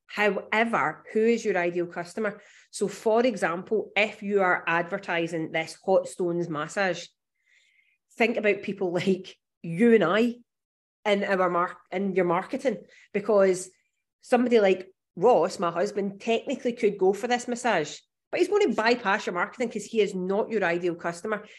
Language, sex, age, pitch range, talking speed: English, female, 30-49, 170-215 Hz, 155 wpm